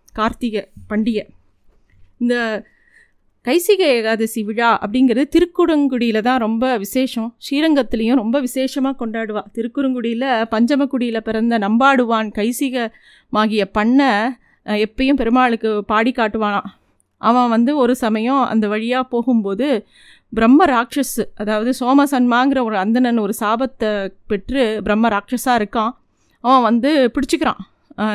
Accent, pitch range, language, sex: native, 220-260 Hz, Tamil, female